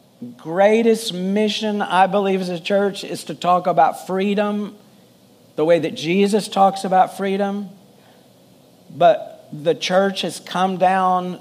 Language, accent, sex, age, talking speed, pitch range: English, American, male, 50-69, 130 wpm, 160-200 Hz